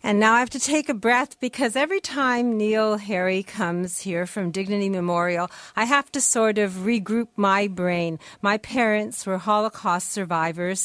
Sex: female